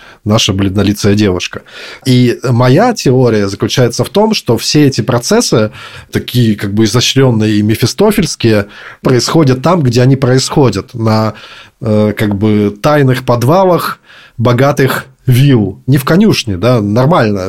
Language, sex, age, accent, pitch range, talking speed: Russian, male, 20-39, native, 105-130 Hz, 125 wpm